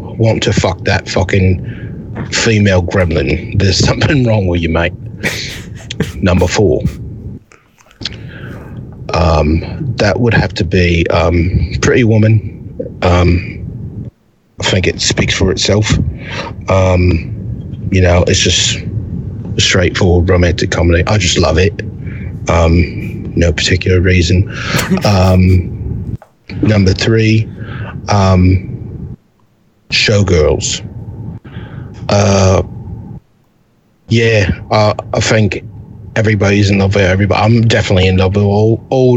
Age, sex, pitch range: 30-49, male, 95-110 Hz